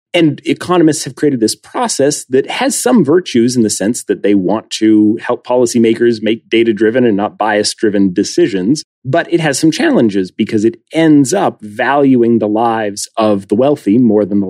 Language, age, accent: English, 40-59, American